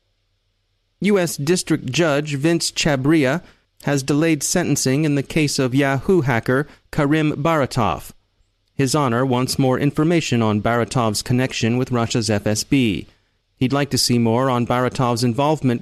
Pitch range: 110-145 Hz